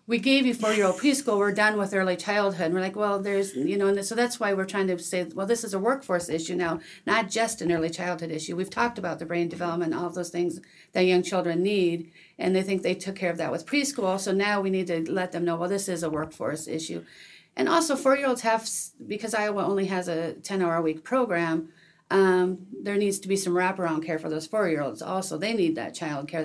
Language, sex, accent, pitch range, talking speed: English, female, American, 170-200 Hz, 235 wpm